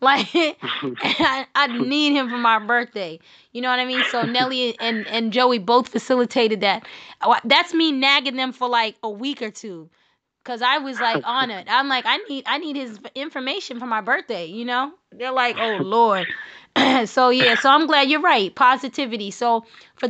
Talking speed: 190 wpm